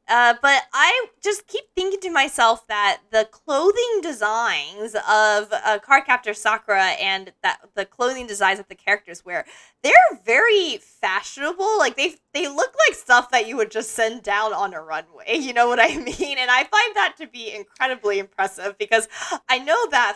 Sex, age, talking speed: female, 20-39, 180 wpm